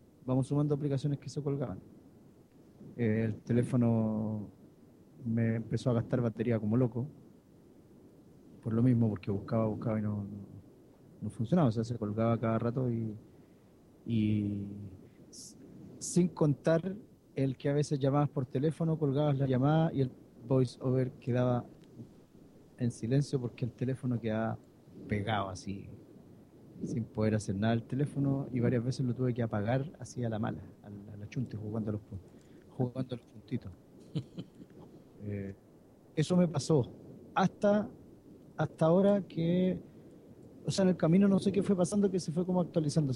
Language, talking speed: Spanish, 145 wpm